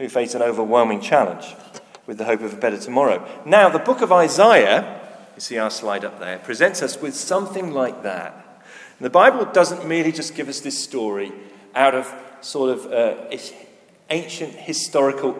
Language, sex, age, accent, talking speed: English, male, 40-59, British, 175 wpm